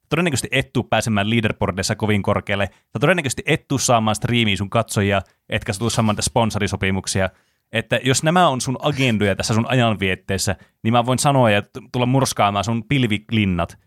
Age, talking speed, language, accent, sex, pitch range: 30-49, 150 wpm, Finnish, native, male, 100-125 Hz